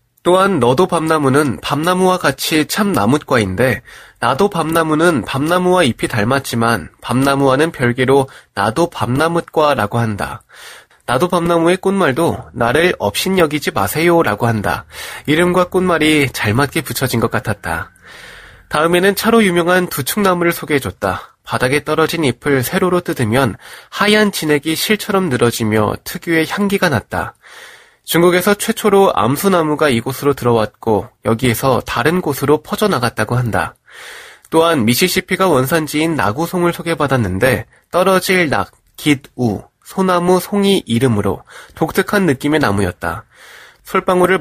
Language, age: Korean, 20-39